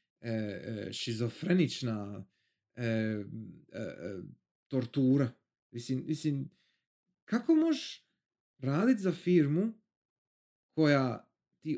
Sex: male